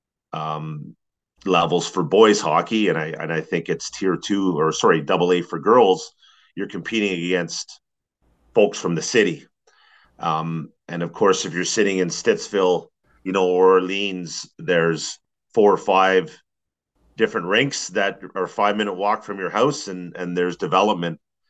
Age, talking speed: 40-59, 155 wpm